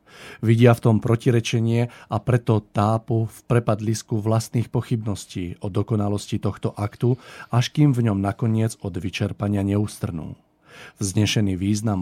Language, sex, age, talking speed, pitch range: Slovak, male, 40-59, 125 wpm, 100-115 Hz